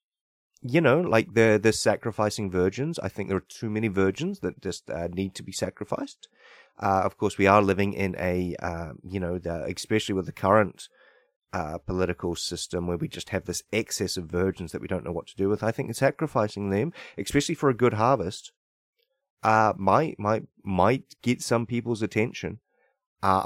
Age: 30-49